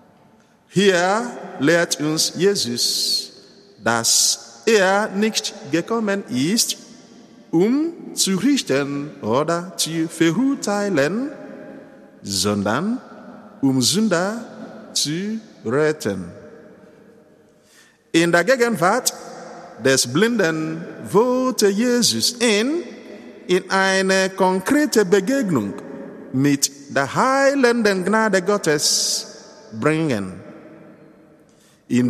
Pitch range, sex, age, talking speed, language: 155-235 Hz, male, 50-69, 75 wpm, German